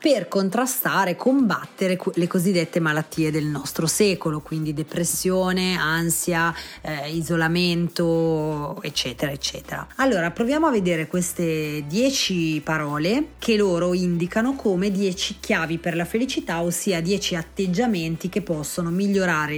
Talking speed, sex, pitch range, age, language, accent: 115 wpm, female, 165-195 Hz, 30-49, Italian, native